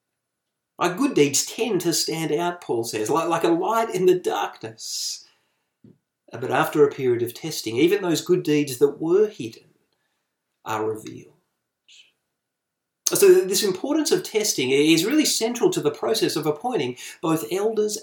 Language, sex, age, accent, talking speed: English, male, 30-49, Australian, 155 wpm